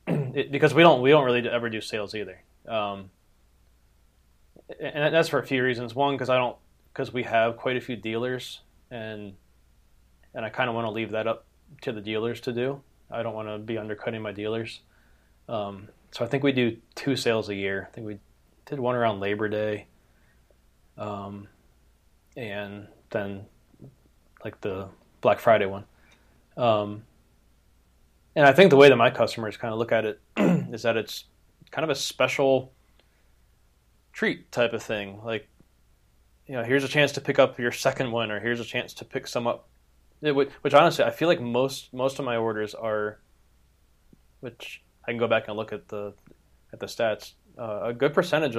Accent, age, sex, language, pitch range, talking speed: American, 20-39, male, English, 100-125 Hz, 185 wpm